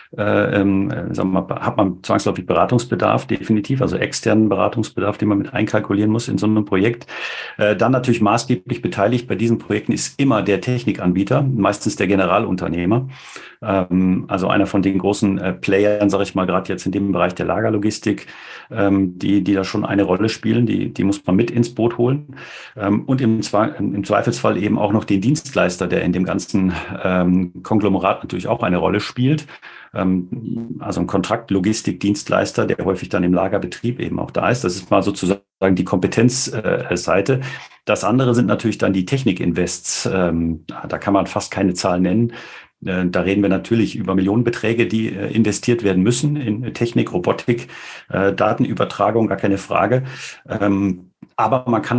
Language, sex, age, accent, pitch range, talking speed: German, male, 40-59, German, 95-115 Hz, 165 wpm